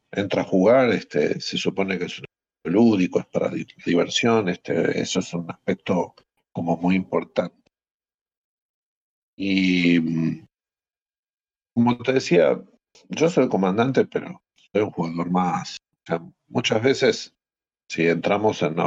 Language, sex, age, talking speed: Spanish, male, 50-69, 130 wpm